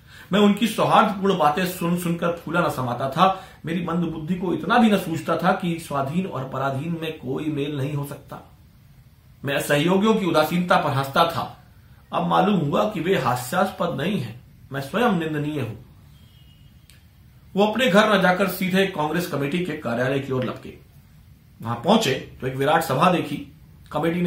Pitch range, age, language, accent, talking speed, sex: 135-185 Hz, 40-59, Hindi, native, 170 wpm, male